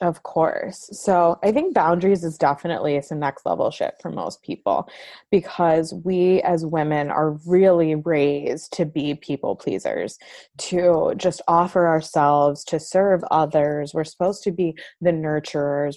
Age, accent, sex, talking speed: 20-39, American, female, 145 wpm